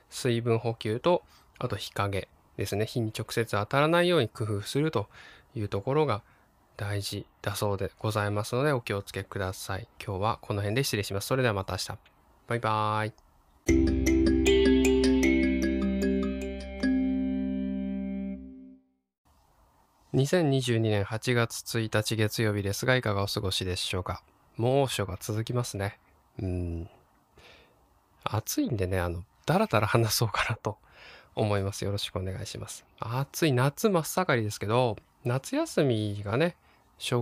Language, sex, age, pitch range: Japanese, male, 20-39, 95-130 Hz